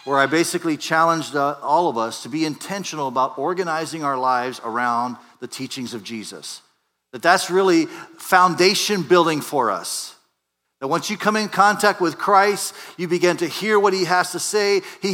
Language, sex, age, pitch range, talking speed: English, male, 40-59, 150-195 Hz, 175 wpm